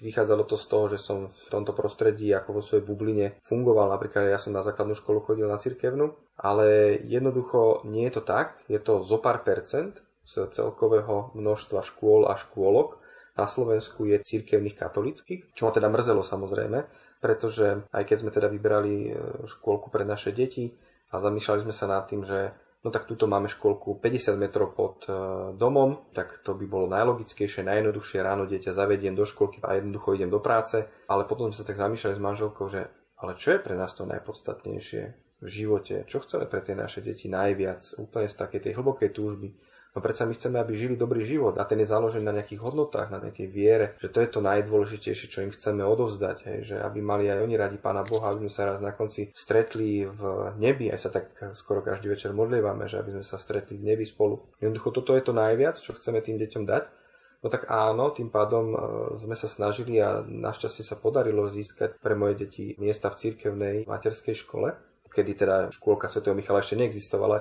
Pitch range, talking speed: 100-130 Hz, 195 wpm